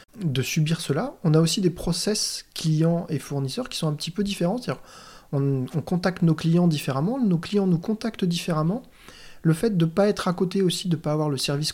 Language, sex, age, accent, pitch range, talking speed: French, male, 30-49, French, 135-170 Hz, 220 wpm